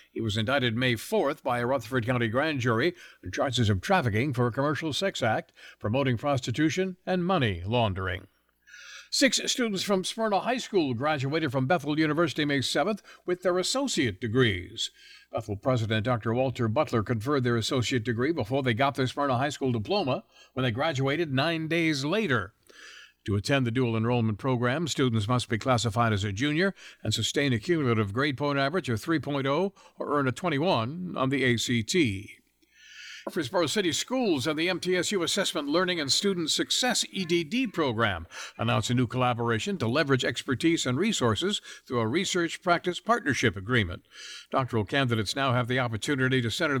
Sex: male